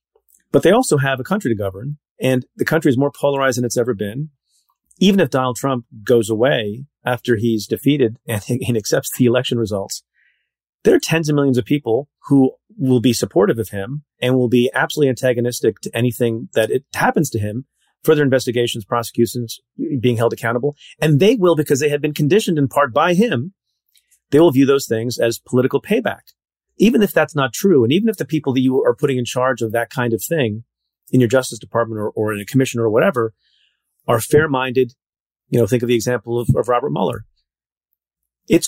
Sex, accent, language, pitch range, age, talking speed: male, American, English, 115-145 Hz, 40-59, 200 wpm